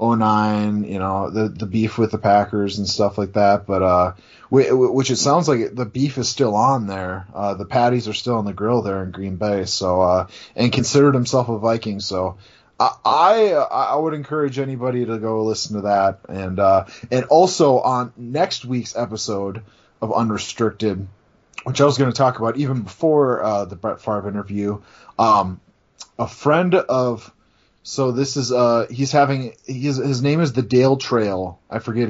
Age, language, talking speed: 20-39, English, 185 wpm